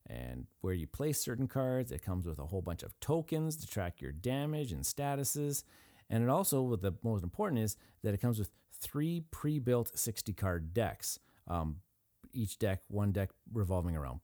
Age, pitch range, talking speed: 30-49, 90-125 Hz, 180 wpm